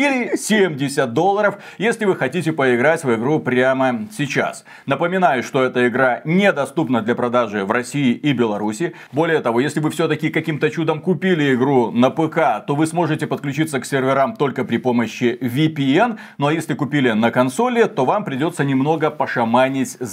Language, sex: Russian, male